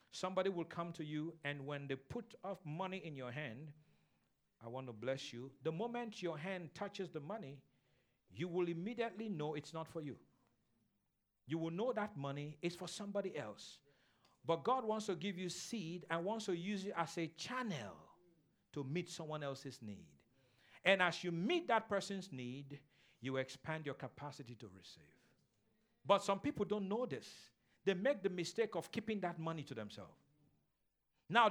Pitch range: 120-195 Hz